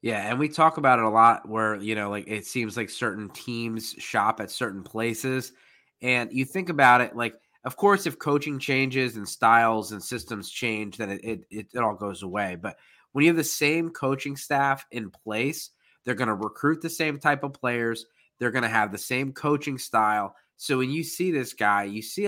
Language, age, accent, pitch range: English, 20-39, American, 110-140 Hz